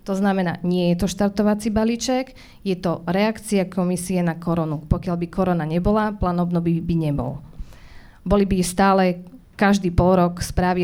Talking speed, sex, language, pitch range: 155 wpm, female, Slovak, 170-200 Hz